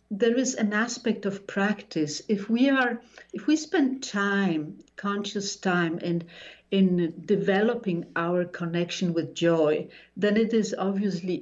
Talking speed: 135 wpm